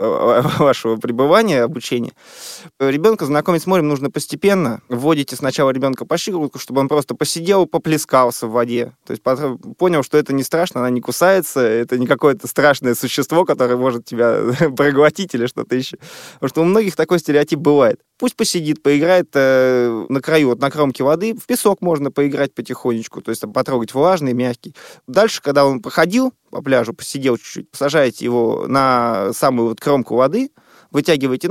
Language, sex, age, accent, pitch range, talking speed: Russian, male, 20-39, native, 125-165 Hz, 160 wpm